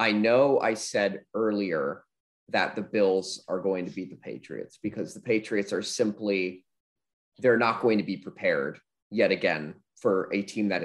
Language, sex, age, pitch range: English, male, 20-39, 105-145 Hz